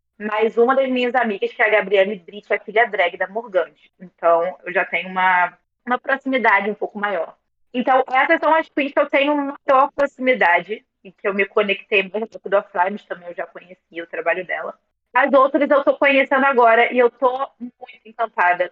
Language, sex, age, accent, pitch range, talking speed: Portuguese, female, 20-39, Brazilian, 190-245 Hz, 200 wpm